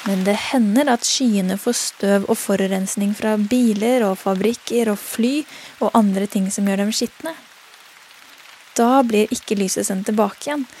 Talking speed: 155 wpm